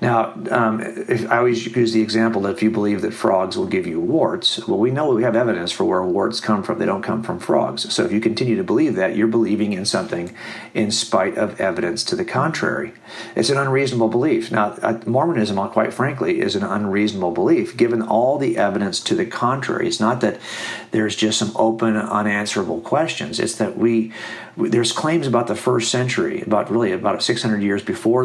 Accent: American